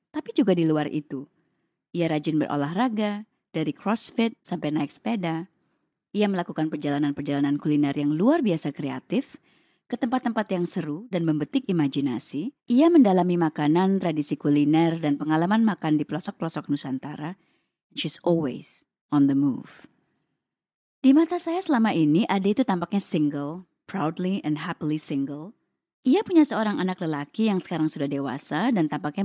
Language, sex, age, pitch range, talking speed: Indonesian, female, 20-39, 150-230 Hz, 140 wpm